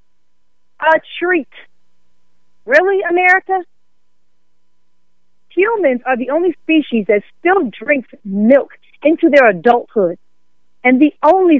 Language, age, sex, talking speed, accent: English, 40-59, female, 100 wpm, American